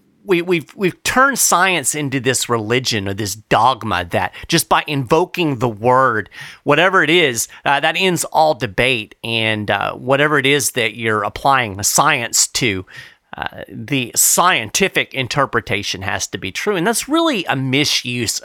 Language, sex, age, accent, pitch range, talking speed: English, male, 40-59, American, 110-165 Hz, 160 wpm